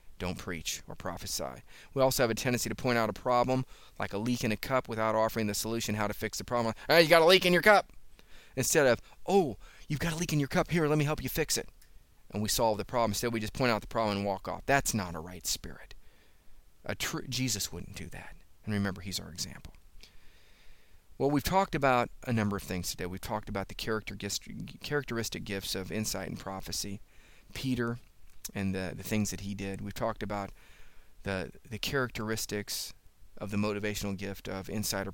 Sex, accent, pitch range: male, American, 95-125 Hz